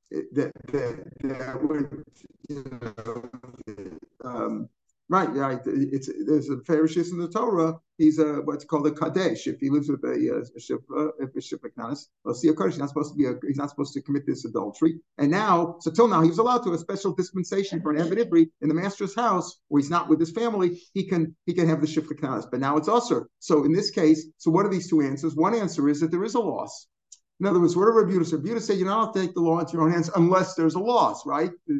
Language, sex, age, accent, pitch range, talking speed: English, male, 50-69, American, 150-185 Hz, 245 wpm